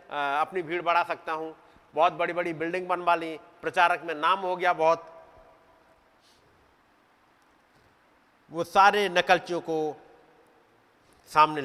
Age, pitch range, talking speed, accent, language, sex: 50-69, 170-235 Hz, 115 wpm, native, Hindi, male